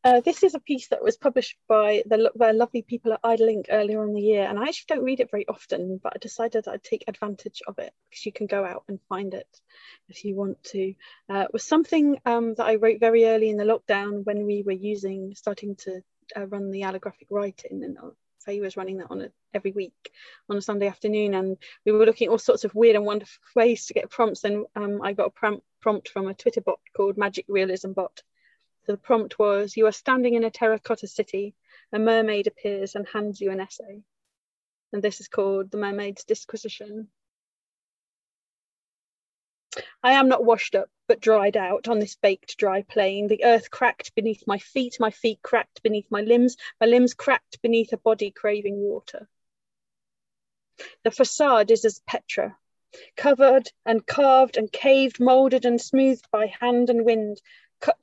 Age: 30-49